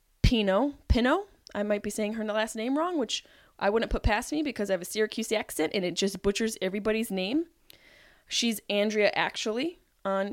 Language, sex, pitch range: English, female, 195-245 Hz